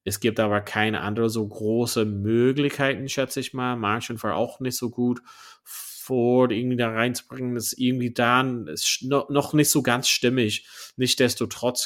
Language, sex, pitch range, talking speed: German, male, 105-125 Hz, 155 wpm